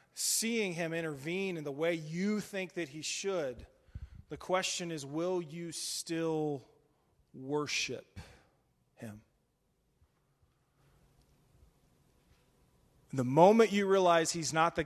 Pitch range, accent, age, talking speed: 140-170 Hz, American, 30-49, 105 wpm